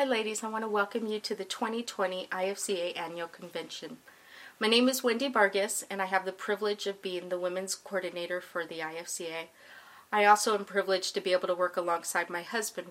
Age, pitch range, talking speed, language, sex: 30-49, 180-205 Hz, 200 wpm, English, female